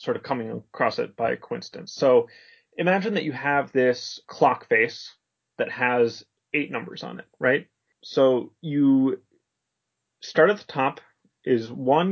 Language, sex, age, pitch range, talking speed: English, male, 30-49, 130-175 Hz, 150 wpm